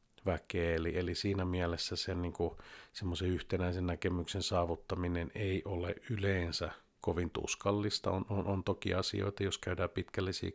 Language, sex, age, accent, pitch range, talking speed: Finnish, male, 50-69, native, 90-105 Hz, 140 wpm